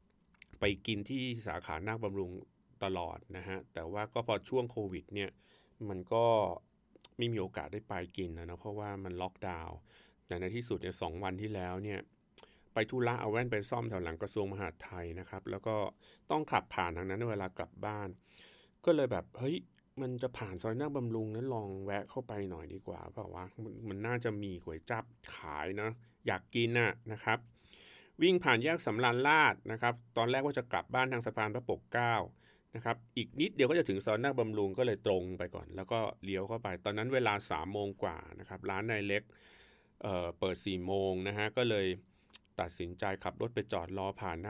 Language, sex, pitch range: Thai, male, 95-115 Hz